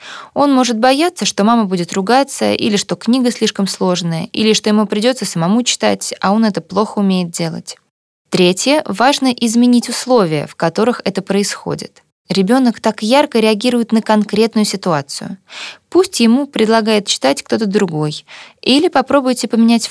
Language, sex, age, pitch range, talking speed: Russian, female, 20-39, 185-235 Hz, 145 wpm